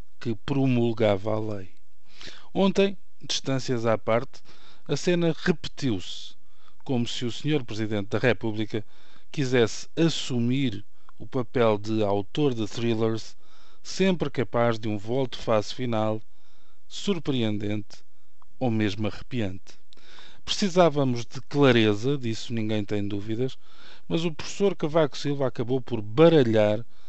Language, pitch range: Portuguese, 110-140 Hz